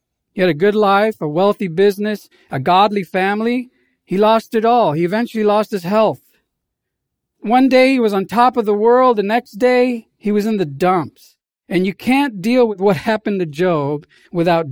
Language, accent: English, American